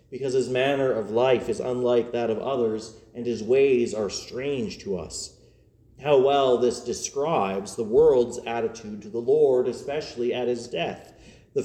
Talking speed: 165 wpm